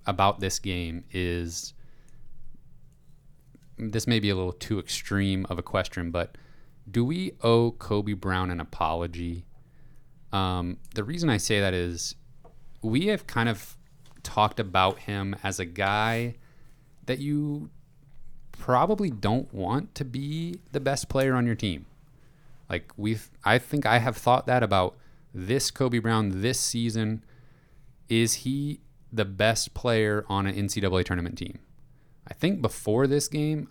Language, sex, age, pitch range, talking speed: English, male, 30-49, 100-140 Hz, 145 wpm